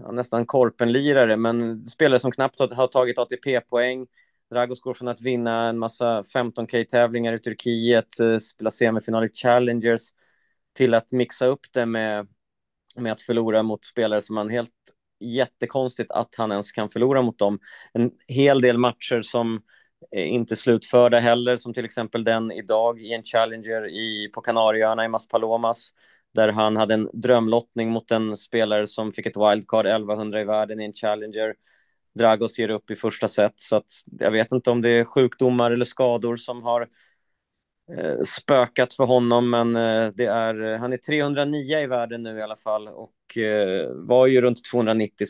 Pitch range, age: 110-120 Hz, 20-39